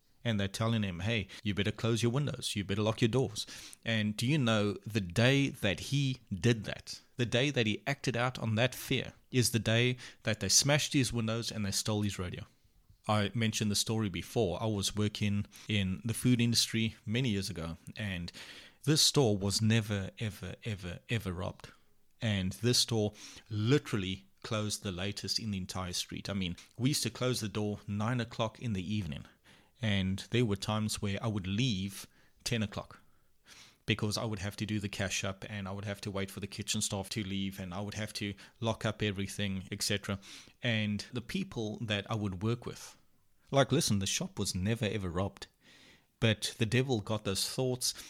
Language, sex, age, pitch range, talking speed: English, male, 30-49, 100-115 Hz, 195 wpm